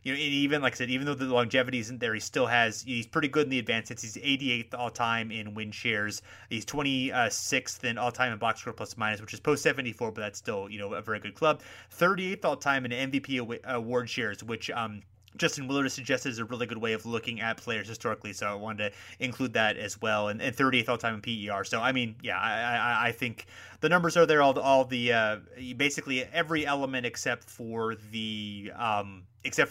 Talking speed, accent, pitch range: 230 wpm, American, 110-135 Hz